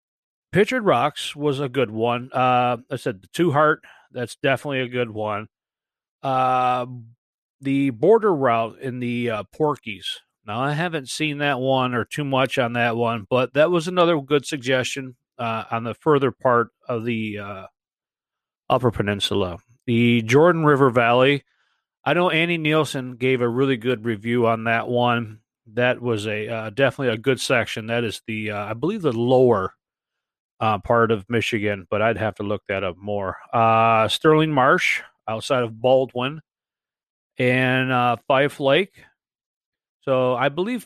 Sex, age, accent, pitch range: male, 40-59, American, 115-140 Hz